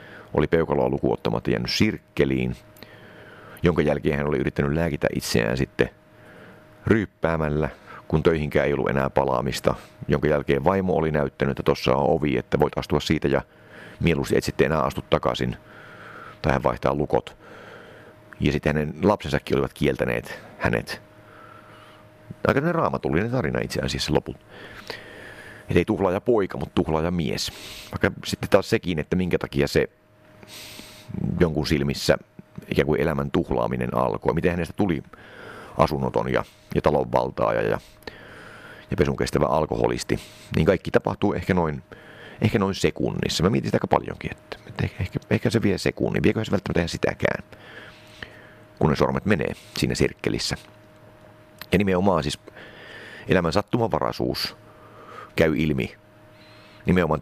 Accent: native